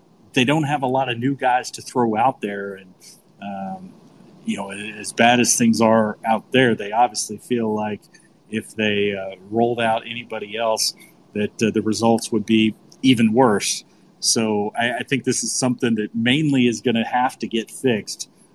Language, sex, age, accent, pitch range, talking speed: English, male, 30-49, American, 110-130 Hz, 190 wpm